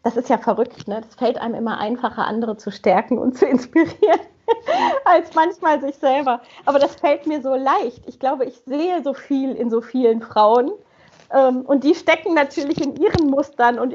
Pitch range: 235-285 Hz